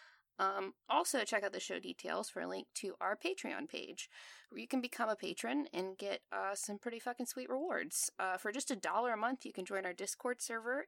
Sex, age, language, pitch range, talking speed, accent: female, 20-39, English, 190-245 Hz, 225 wpm, American